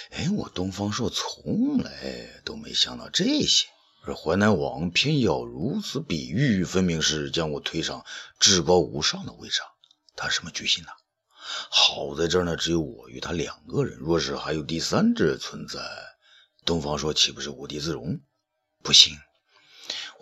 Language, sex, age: Chinese, male, 50-69